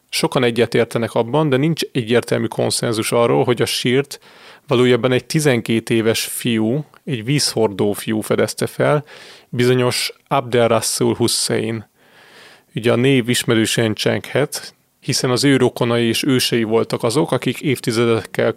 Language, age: Hungarian, 30-49